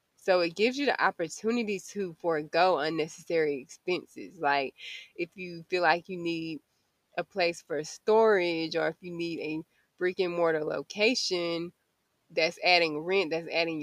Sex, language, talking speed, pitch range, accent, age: female, English, 150 wpm, 155-185 Hz, American, 20-39